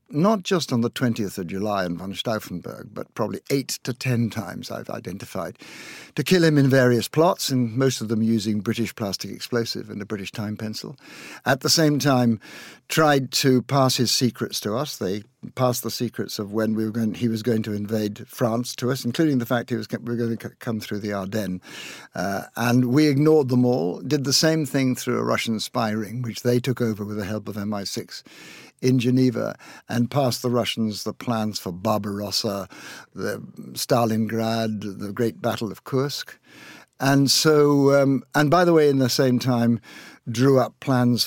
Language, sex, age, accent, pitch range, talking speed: English, male, 60-79, British, 110-130 Hz, 195 wpm